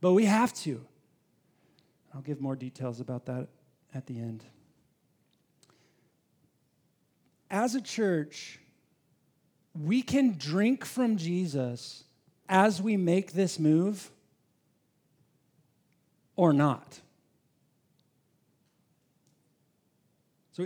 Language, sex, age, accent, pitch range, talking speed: English, male, 40-59, American, 155-200 Hz, 85 wpm